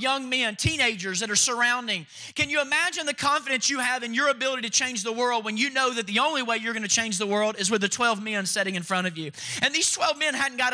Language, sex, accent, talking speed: English, male, American, 275 wpm